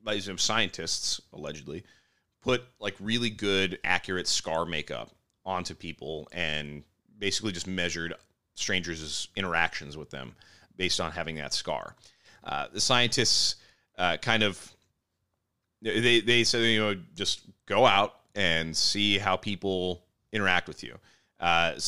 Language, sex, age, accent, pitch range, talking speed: English, male, 30-49, American, 85-105 Hz, 125 wpm